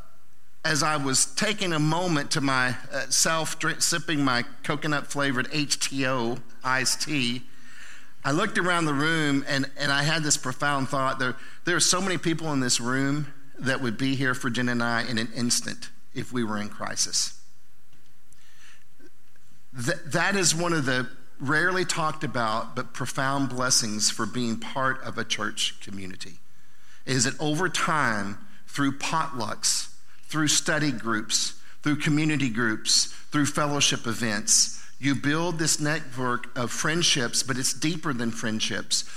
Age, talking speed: 50-69, 145 wpm